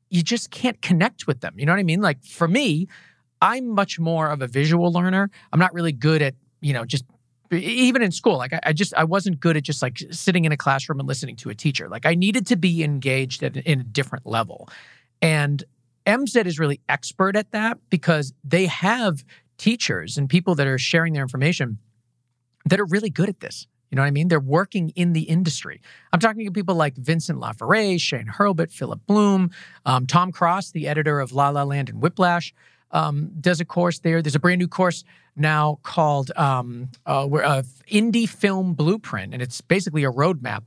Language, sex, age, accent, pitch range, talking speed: English, male, 40-59, American, 135-185 Hz, 205 wpm